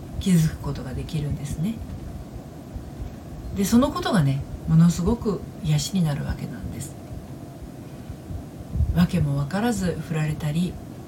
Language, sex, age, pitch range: Japanese, female, 40-59, 150-210 Hz